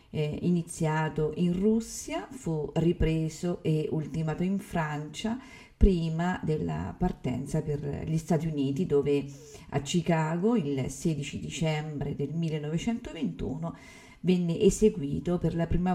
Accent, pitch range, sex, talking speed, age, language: native, 145-185 Hz, female, 110 wpm, 50-69, Italian